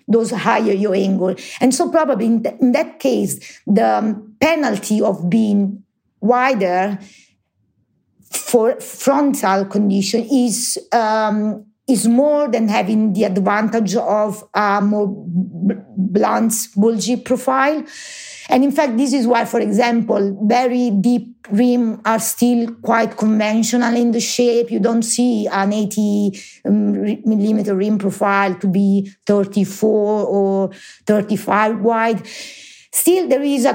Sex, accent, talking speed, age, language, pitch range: female, Italian, 125 wpm, 50-69, English, 205-245 Hz